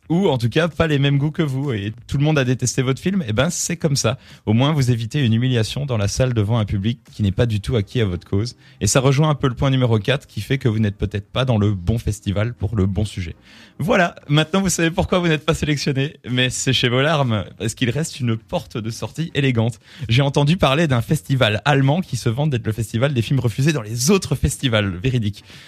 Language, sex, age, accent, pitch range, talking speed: French, male, 30-49, French, 110-145 Hz, 260 wpm